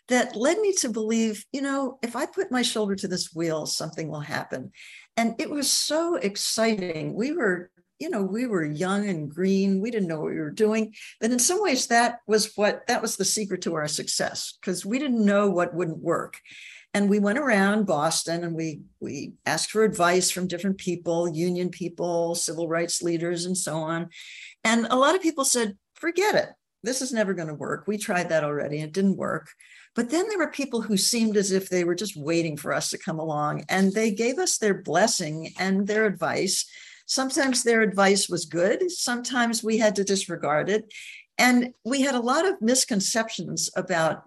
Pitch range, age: 170-240 Hz, 60-79